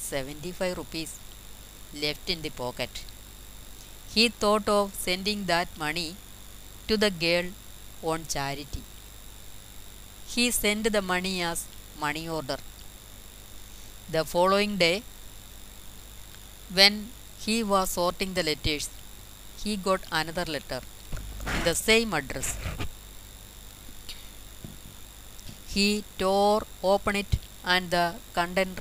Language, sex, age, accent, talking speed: Malayalam, female, 30-49, native, 100 wpm